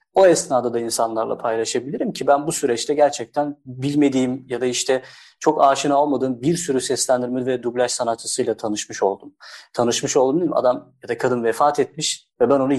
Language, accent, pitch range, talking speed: Turkish, native, 125-155 Hz, 170 wpm